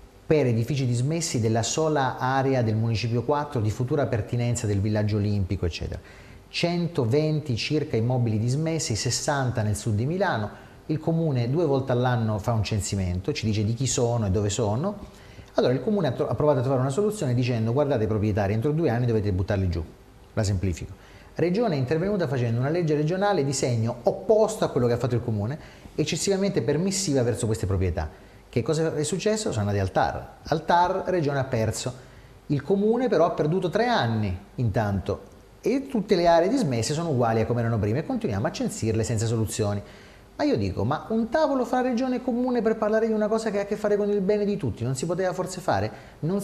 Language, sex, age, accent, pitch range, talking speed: Italian, male, 40-59, native, 110-170 Hz, 195 wpm